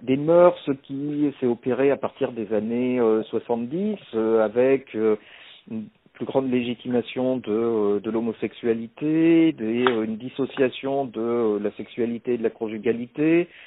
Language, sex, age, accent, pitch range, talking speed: French, male, 50-69, French, 125-165 Hz, 125 wpm